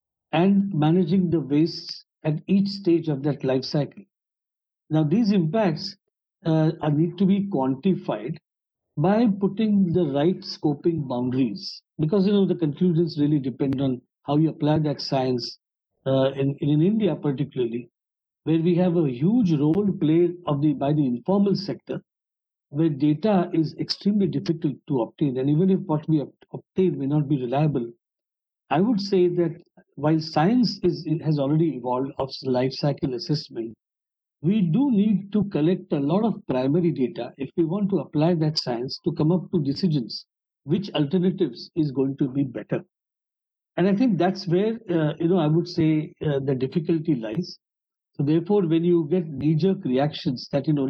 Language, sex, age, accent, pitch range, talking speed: English, male, 60-79, Indian, 145-180 Hz, 170 wpm